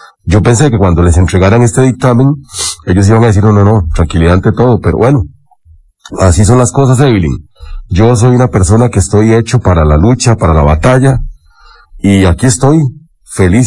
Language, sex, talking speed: English, male, 185 wpm